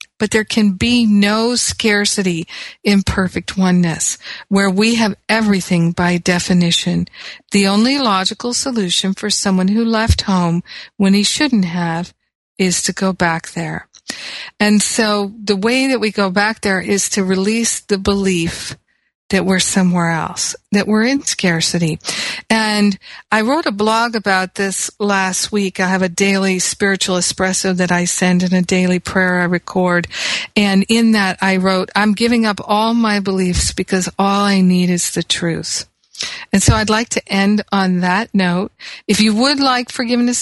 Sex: female